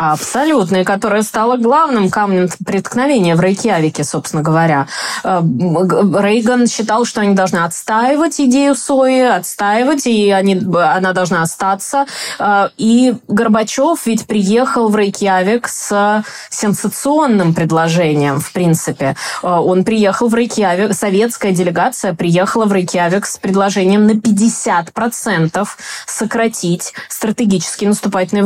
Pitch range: 185-235 Hz